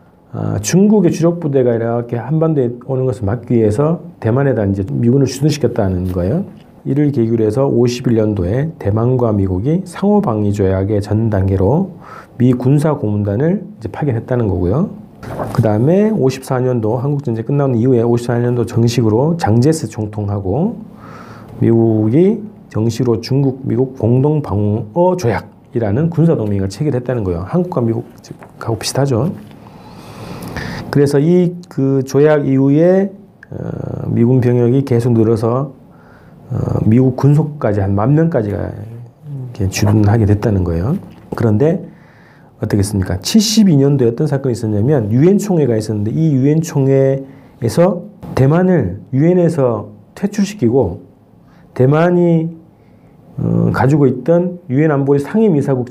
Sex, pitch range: male, 110-155 Hz